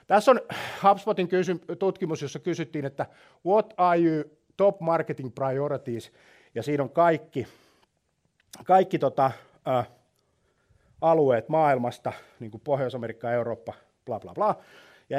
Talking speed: 120 wpm